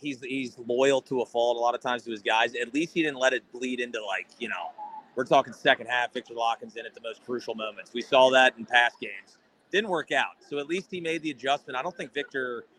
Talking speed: 265 wpm